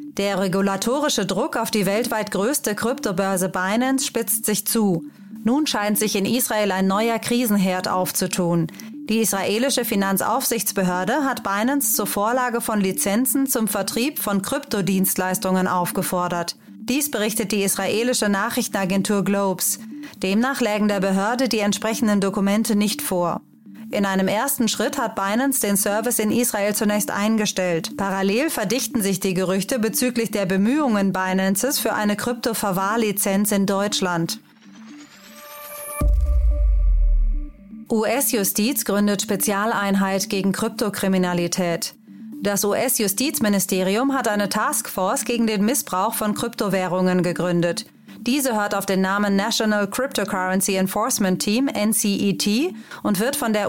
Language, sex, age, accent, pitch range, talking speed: German, female, 30-49, German, 195-235 Hz, 120 wpm